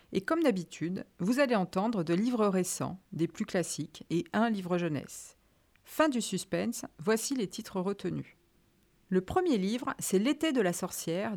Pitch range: 175-230 Hz